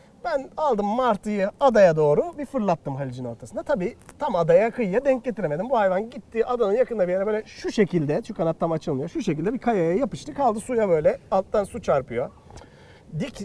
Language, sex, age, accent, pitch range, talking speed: Turkish, male, 40-59, native, 165-225 Hz, 185 wpm